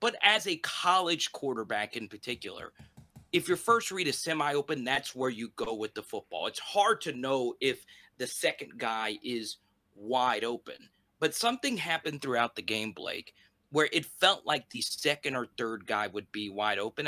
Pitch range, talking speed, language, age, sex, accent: 110-150 Hz, 180 wpm, English, 30-49, male, American